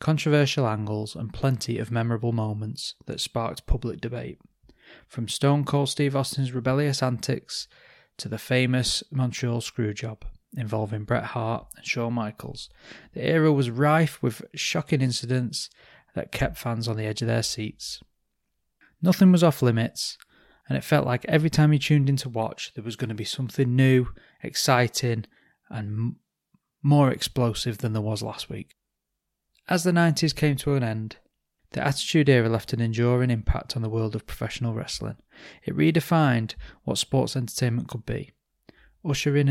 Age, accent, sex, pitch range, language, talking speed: 20-39, British, male, 110-140 Hz, English, 160 wpm